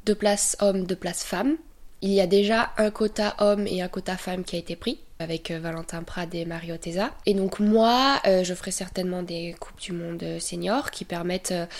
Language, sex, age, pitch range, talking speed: French, female, 20-39, 170-205 Hz, 215 wpm